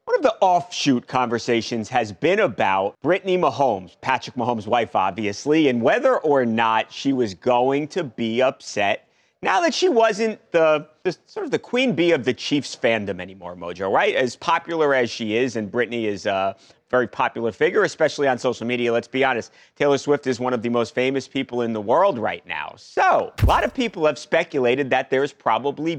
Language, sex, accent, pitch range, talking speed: English, male, American, 115-180 Hz, 200 wpm